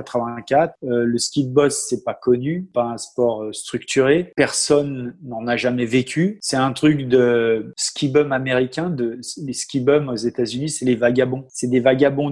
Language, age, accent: French, 20-39, French